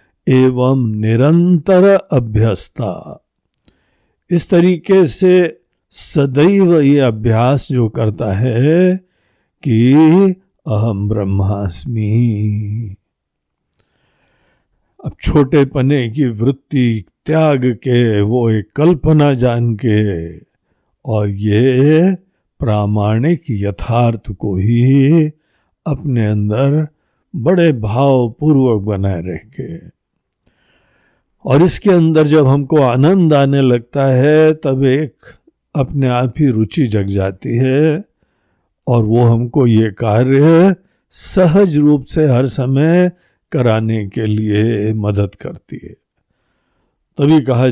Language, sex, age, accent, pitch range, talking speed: Hindi, male, 60-79, native, 110-150 Hz, 95 wpm